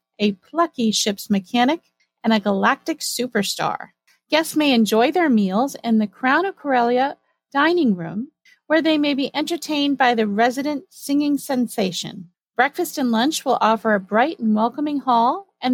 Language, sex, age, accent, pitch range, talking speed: English, female, 30-49, American, 215-275 Hz, 155 wpm